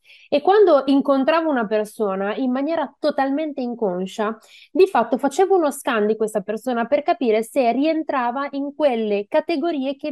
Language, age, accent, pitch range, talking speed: Italian, 20-39, native, 210-265 Hz, 150 wpm